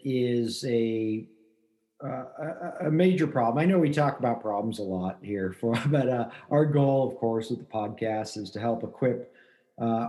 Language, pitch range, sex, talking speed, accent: English, 115-145 Hz, male, 180 wpm, American